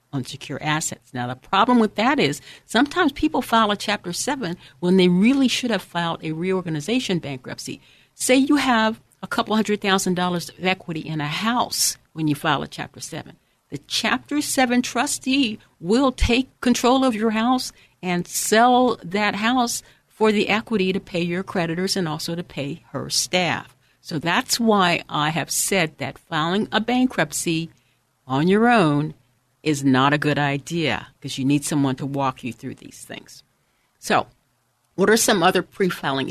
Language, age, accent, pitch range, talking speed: English, 60-79, American, 140-205 Hz, 170 wpm